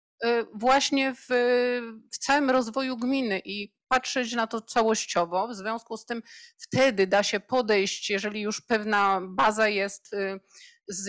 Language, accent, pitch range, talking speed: Polish, native, 200-245 Hz, 135 wpm